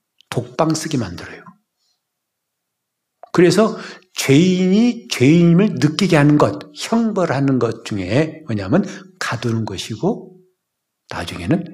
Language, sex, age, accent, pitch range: Korean, male, 60-79, native, 130-195 Hz